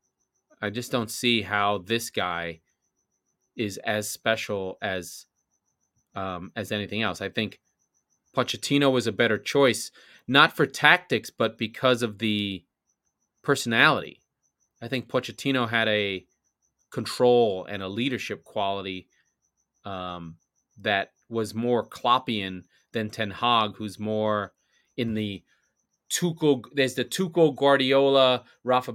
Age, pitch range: 30-49, 105-125 Hz